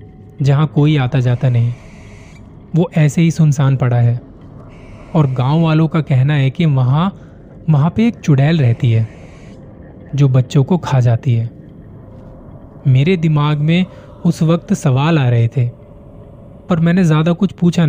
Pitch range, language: 130-170 Hz, Hindi